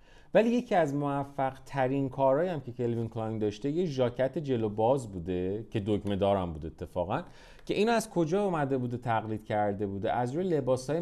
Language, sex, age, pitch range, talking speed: Persian, male, 30-49, 95-135 Hz, 185 wpm